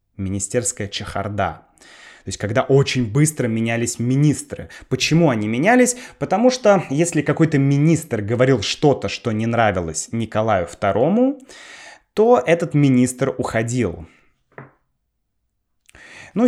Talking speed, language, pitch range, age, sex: 105 wpm, Russian, 105-145 Hz, 20-39, male